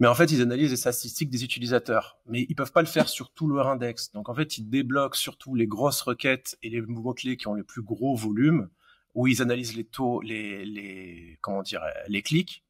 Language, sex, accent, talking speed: French, male, French, 235 wpm